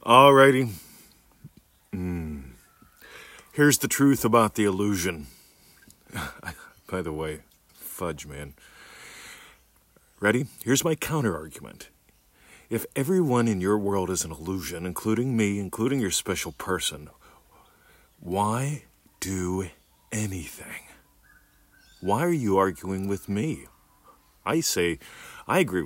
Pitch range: 80-110 Hz